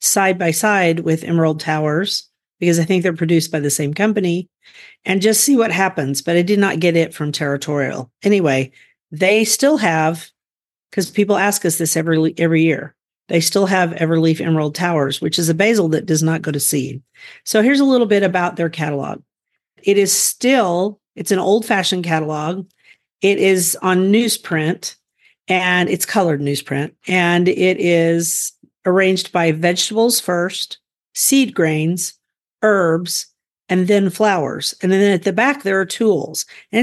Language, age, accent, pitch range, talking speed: English, 40-59, American, 160-205 Hz, 165 wpm